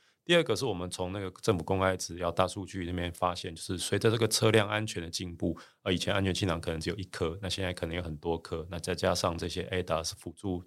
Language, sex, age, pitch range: Chinese, male, 30-49, 85-105 Hz